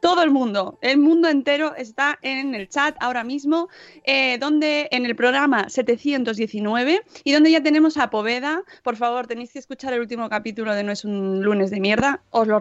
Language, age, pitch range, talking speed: Spanish, 20-39, 230-290 Hz, 195 wpm